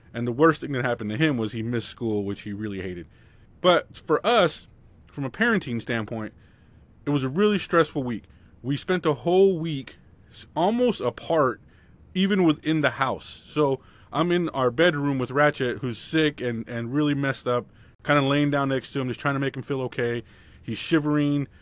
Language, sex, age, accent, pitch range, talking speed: English, male, 20-39, American, 115-145 Hz, 195 wpm